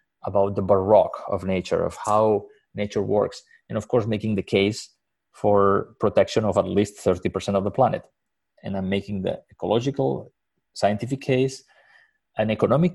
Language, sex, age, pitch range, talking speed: English, male, 30-49, 100-115 Hz, 155 wpm